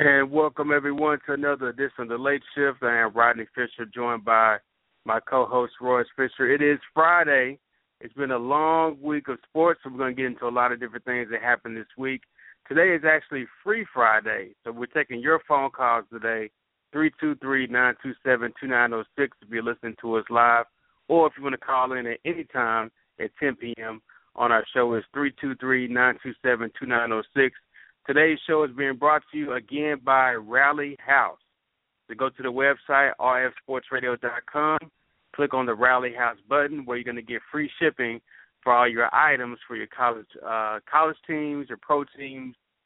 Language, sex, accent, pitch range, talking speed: English, male, American, 120-145 Hz, 175 wpm